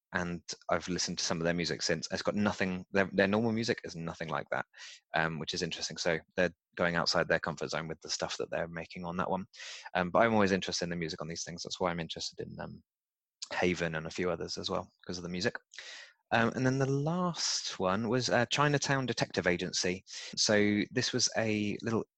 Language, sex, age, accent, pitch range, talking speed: English, male, 20-39, British, 90-120 Hz, 225 wpm